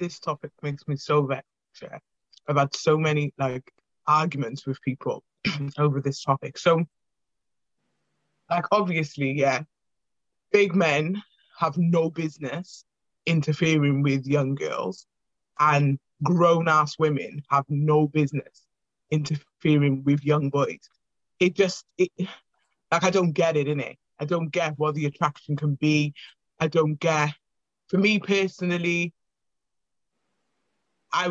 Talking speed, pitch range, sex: 125 wpm, 150-185 Hz, male